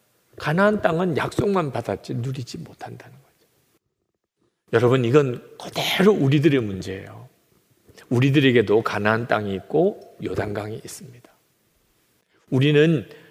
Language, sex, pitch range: Korean, male, 120-180 Hz